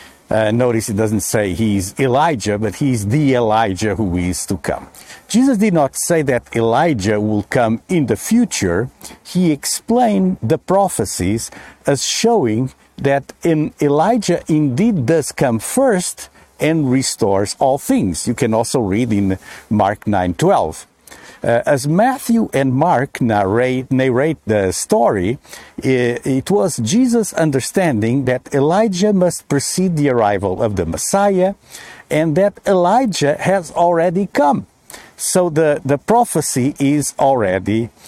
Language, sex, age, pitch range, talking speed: English, male, 50-69, 115-180 Hz, 135 wpm